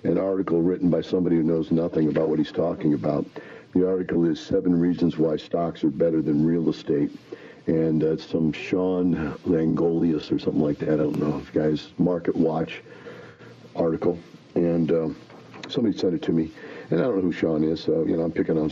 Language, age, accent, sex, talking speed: English, 60-79, American, male, 200 wpm